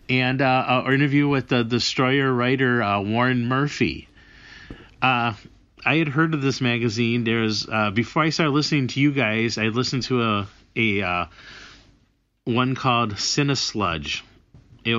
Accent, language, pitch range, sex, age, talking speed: American, English, 105-125 Hz, male, 30-49, 155 wpm